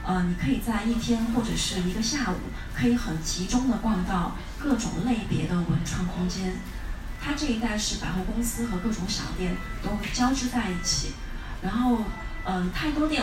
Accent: native